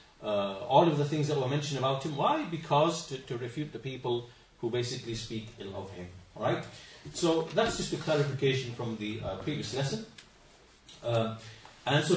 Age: 40-59